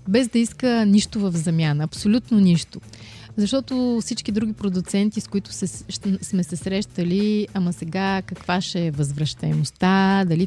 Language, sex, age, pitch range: Bulgarian, female, 20-39, 180-215 Hz